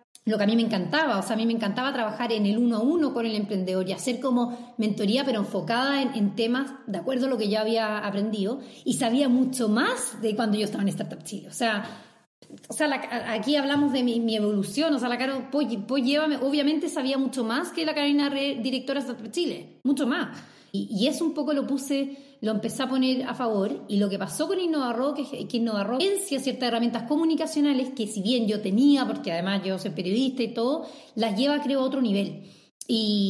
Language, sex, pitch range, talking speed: Spanish, female, 215-270 Hz, 225 wpm